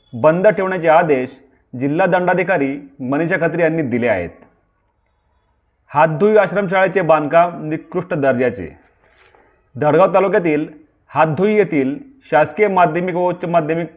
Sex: male